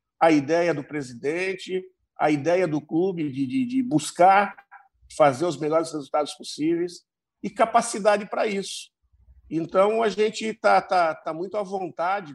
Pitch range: 150-205 Hz